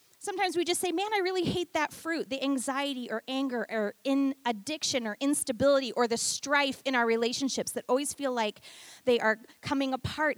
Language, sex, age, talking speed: English, female, 30-49, 190 wpm